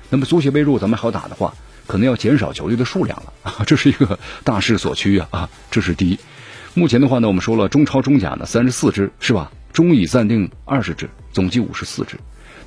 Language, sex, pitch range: Chinese, male, 100-140 Hz